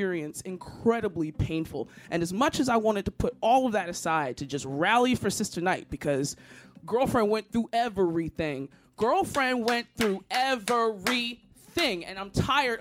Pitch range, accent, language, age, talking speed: 170-240 Hz, American, English, 20-39, 160 wpm